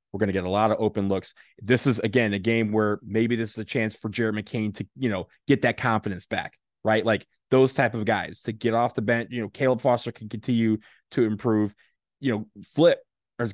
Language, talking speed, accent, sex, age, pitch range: English, 235 wpm, American, male, 20-39, 110-125 Hz